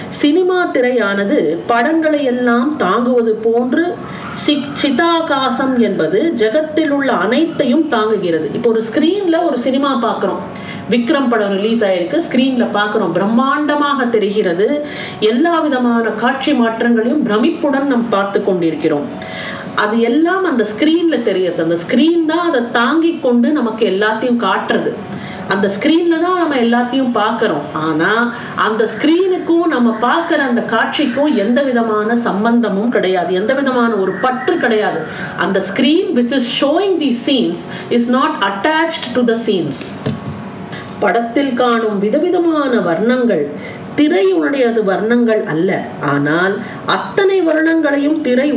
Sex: female